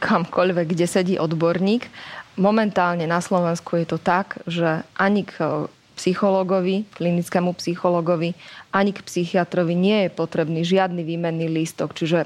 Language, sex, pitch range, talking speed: Slovak, female, 175-195 Hz, 125 wpm